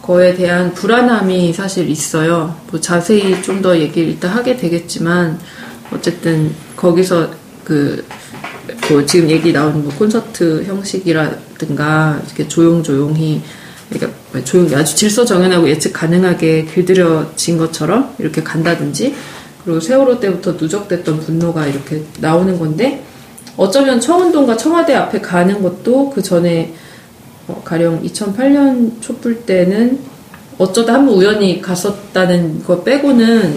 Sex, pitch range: female, 165-215 Hz